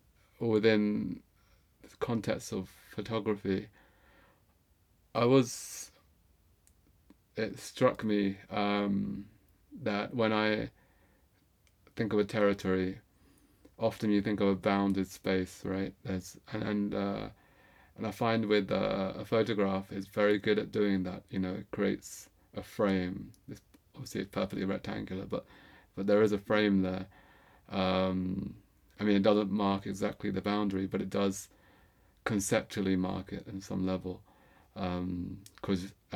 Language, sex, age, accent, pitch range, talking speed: English, male, 30-49, British, 95-105 Hz, 135 wpm